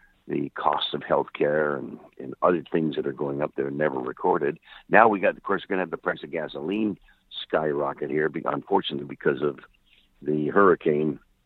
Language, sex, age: English, male, 60-79